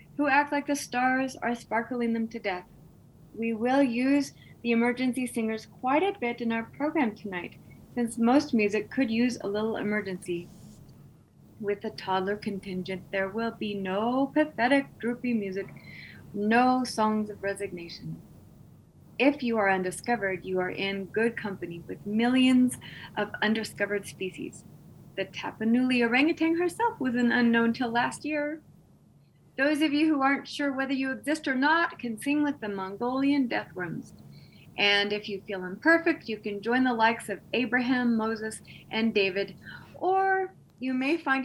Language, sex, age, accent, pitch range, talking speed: English, female, 30-49, American, 200-265 Hz, 155 wpm